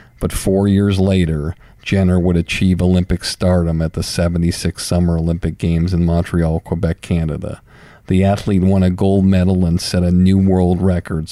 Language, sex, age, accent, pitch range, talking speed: English, male, 50-69, American, 85-95 Hz, 165 wpm